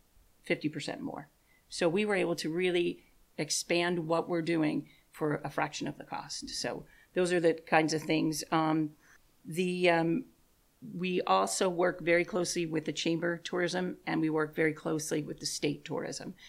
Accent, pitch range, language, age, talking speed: American, 150-170 Hz, English, 40-59, 165 wpm